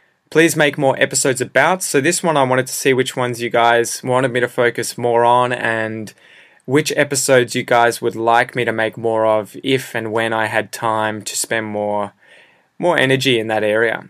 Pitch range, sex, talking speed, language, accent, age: 115-130 Hz, male, 205 wpm, English, Australian, 20-39